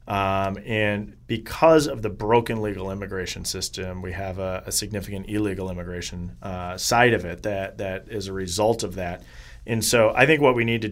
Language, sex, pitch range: English, male, 100-120 Hz